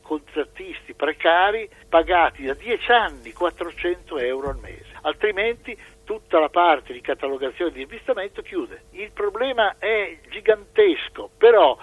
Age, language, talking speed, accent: 60-79, Italian, 120 wpm, native